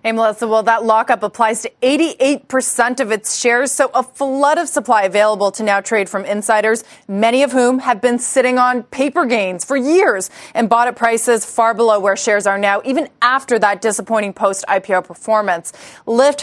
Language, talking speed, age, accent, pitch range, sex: English, 185 wpm, 20-39, American, 210-255 Hz, female